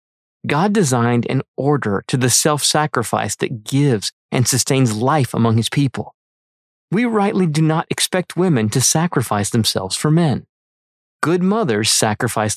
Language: English